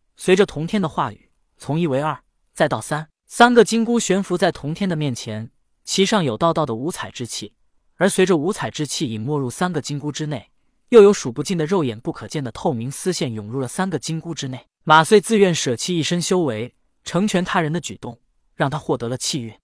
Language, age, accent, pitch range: Chinese, 20-39, native, 130-185 Hz